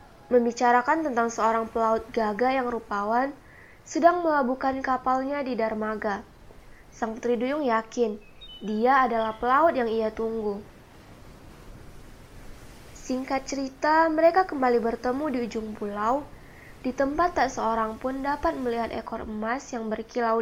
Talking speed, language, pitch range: 120 wpm, Indonesian, 220-265 Hz